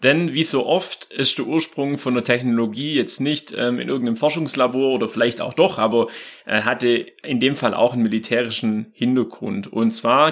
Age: 30-49